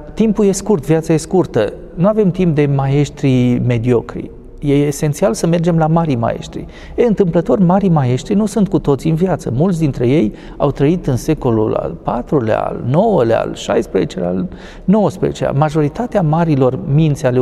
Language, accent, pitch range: Romanian, native, 140-190 Hz